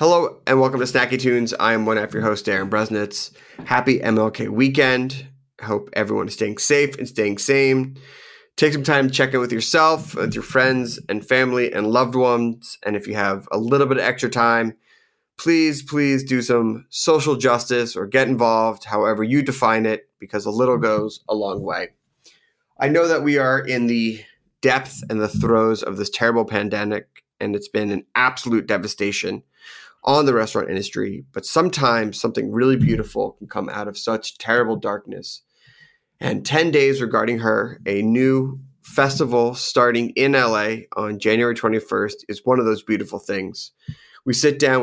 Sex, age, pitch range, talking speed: male, 30-49, 110-135 Hz, 175 wpm